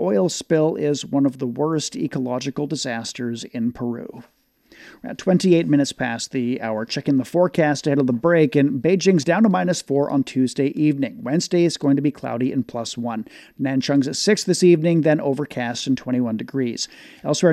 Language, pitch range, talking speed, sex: English, 130-165 Hz, 180 wpm, male